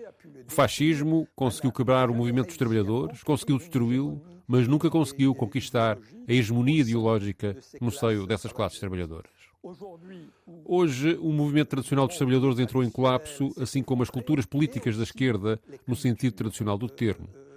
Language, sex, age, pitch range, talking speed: Portuguese, male, 40-59, 115-145 Hz, 145 wpm